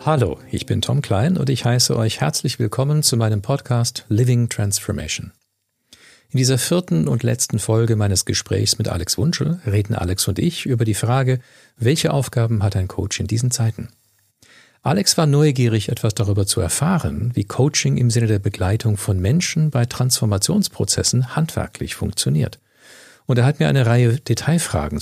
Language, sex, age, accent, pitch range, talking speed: German, male, 50-69, German, 105-130 Hz, 165 wpm